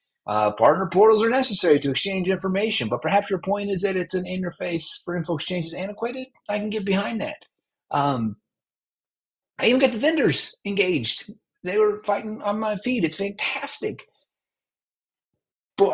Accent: American